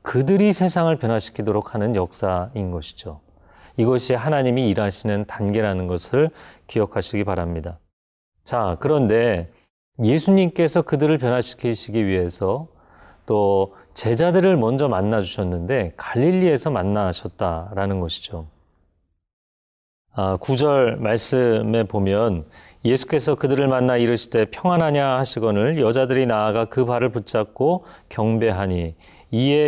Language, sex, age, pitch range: Korean, male, 30-49, 95-145 Hz